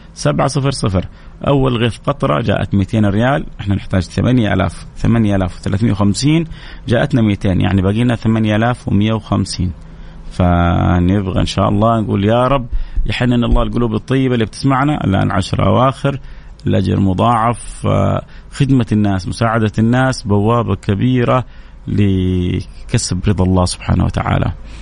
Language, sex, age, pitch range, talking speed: Arabic, male, 30-49, 95-120 Hz, 115 wpm